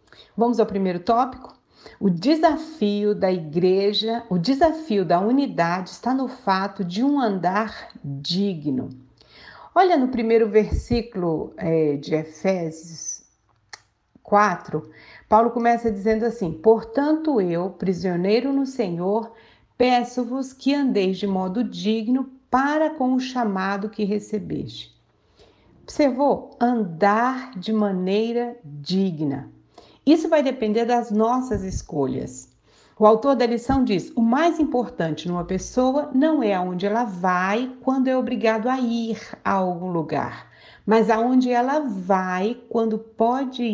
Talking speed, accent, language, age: 120 wpm, Brazilian, Portuguese, 60-79